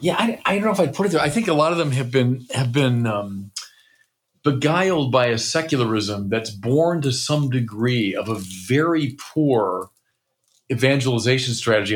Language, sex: English, male